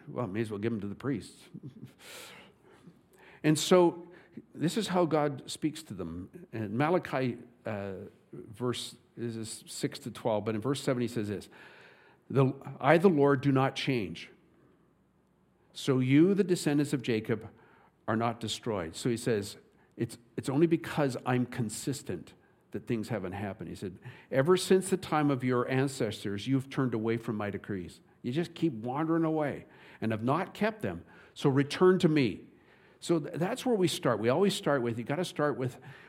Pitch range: 115-160 Hz